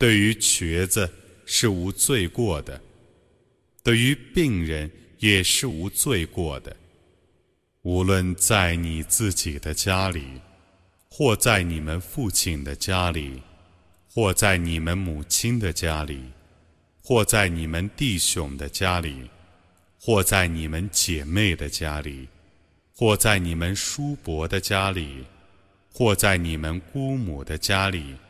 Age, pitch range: 30-49, 80-100 Hz